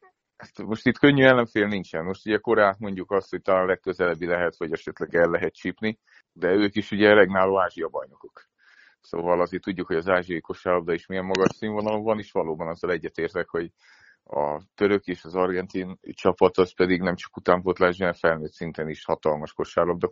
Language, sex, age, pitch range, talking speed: Hungarian, male, 30-49, 85-100 Hz, 180 wpm